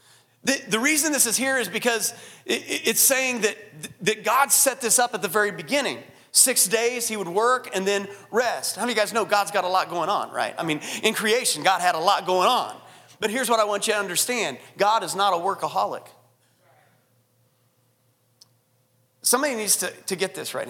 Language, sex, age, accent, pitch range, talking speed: English, male, 30-49, American, 190-250 Hz, 205 wpm